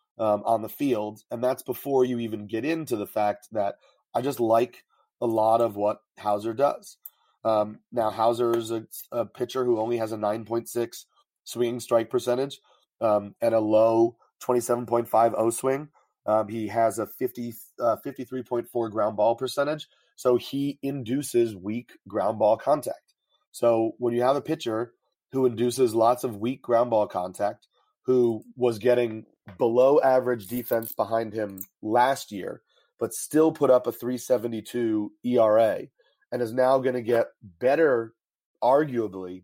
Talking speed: 150 wpm